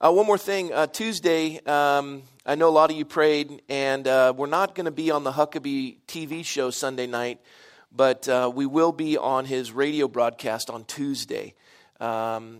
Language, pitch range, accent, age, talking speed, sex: English, 125-155 Hz, American, 40-59, 190 wpm, male